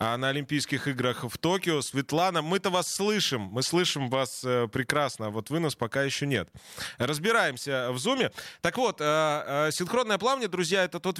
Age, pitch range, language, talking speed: 20-39, 130-180 Hz, Russian, 165 wpm